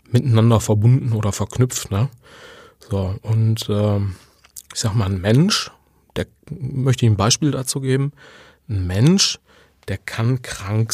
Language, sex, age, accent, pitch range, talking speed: German, male, 30-49, German, 110-140 Hz, 135 wpm